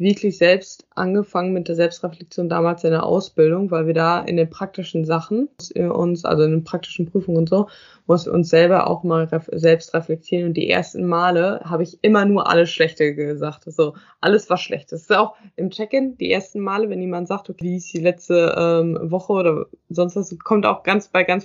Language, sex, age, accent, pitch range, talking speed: German, female, 20-39, German, 170-205 Hz, 205 wpm